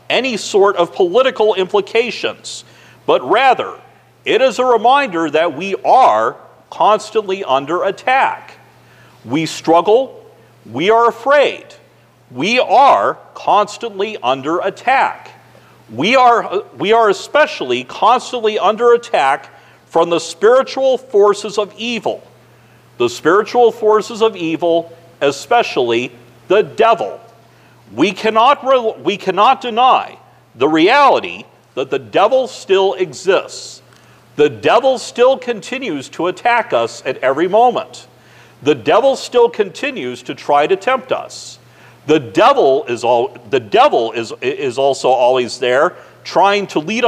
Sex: male